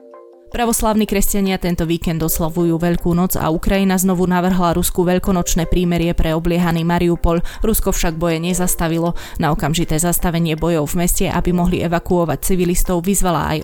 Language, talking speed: Slovak, 145 wpm